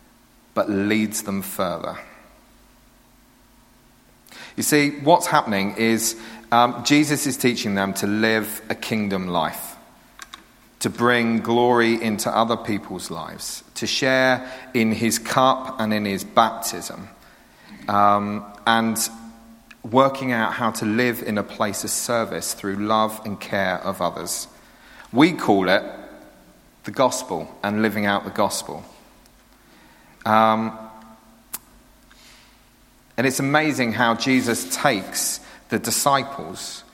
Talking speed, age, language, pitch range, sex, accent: 115 wpm, 40-59, English, 110-130 Hz, male, British